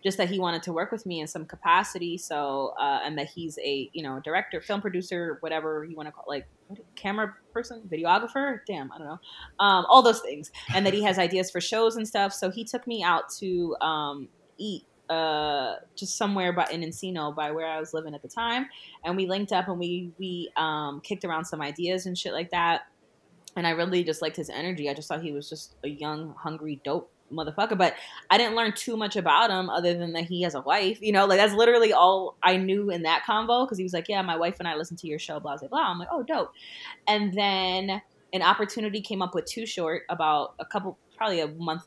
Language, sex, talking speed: English, female, 240 wpm